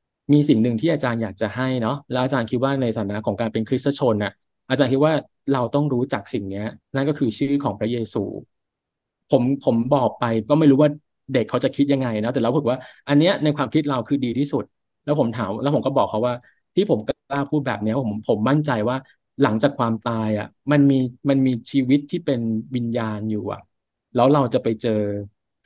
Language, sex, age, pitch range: Thai, male, 20-39, 110-140 Hz